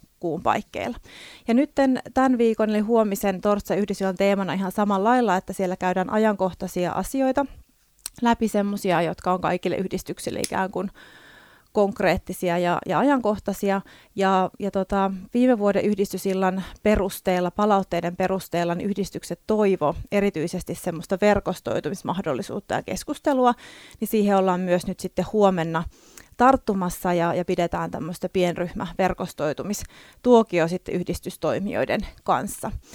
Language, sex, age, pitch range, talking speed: Finnish, female, 30-49, 180-205 Hz, 110 wpm